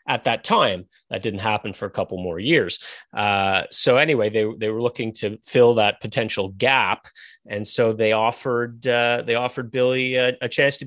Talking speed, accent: 195 wpm, American